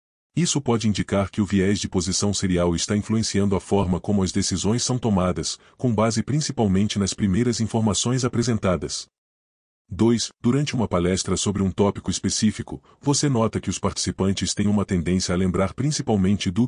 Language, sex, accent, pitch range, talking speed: Portuguese, male, Brazilian, 95-115 Hz, 160 wpm